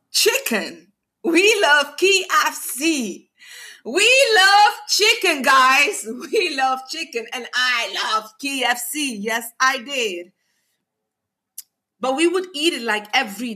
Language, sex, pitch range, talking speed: English, female, 235-315 Hz, 110 wpm